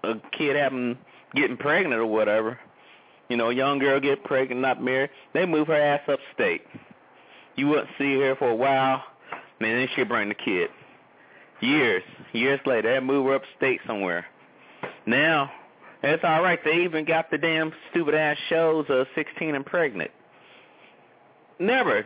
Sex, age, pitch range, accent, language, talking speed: male, 30-49, 130-180 Hz, American, English, 160 wpm